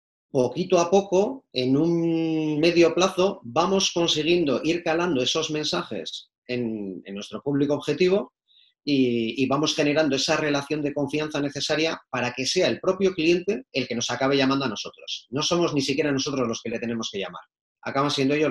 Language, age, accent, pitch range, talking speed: Spanish, 30-49, Spanish, 125-160 Hz, 175 wpm